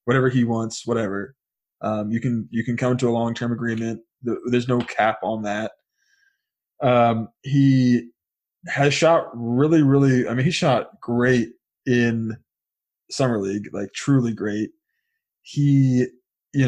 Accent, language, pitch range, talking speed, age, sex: American, English, 115-140 Hz, 140 wpm, 20-39, male